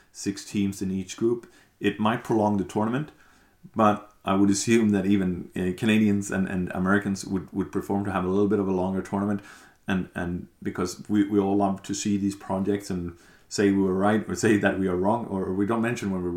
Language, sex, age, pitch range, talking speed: English, male, 30-49, 95-110 Hz, 225 wpm